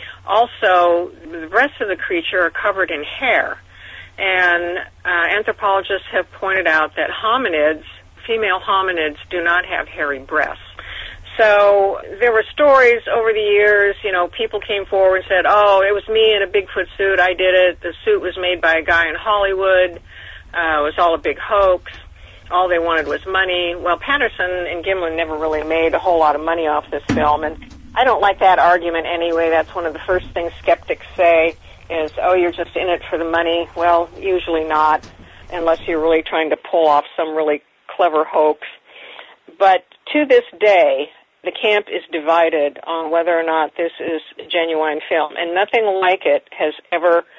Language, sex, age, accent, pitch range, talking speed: English, female, 40-59, American, 160-195 Hz, 185 wpm